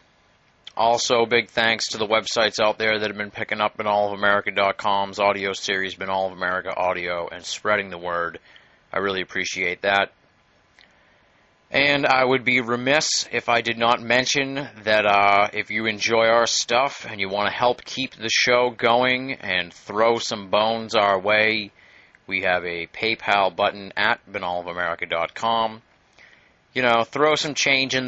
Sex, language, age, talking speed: male, English, 30-49, 155 wpm